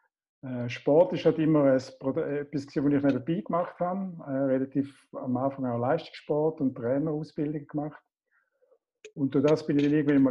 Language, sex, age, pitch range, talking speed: German, male, 50-69, 130-155 Hz, 150 wpm